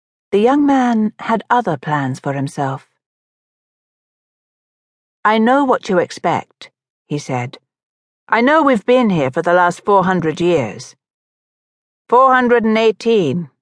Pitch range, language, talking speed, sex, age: 155-235 Hz, English, 115 wpm, female, 60-79